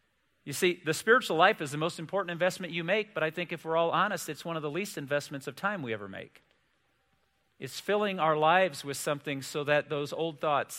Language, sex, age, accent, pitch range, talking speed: English, male, 40-59, American, 140-180 Hz, 230 wpm